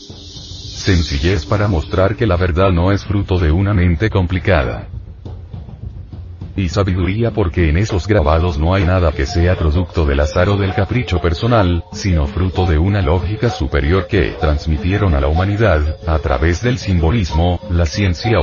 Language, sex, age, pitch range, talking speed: Spanish, male, 40-59, 85-105 Hz, 155 wpm